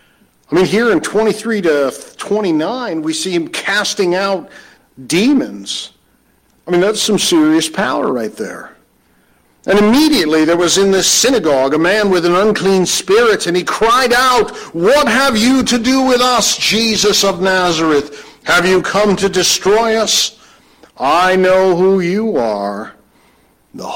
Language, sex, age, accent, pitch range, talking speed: English, male, 50-69, American, 140-225 Hz, 150 wpm